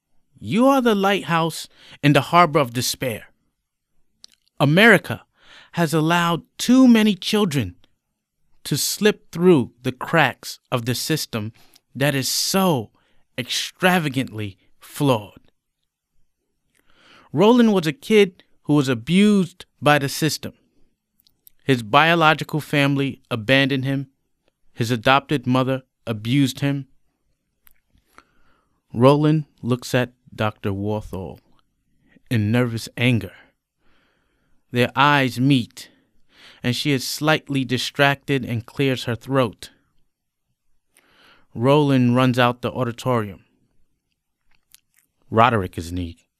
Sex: male